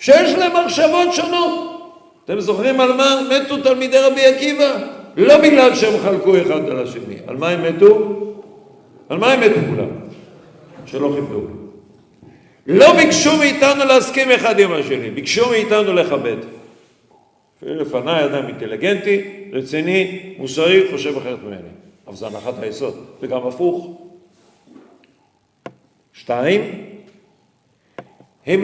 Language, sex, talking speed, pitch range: Hebrew, male, 120 wpm, 180-290 Hz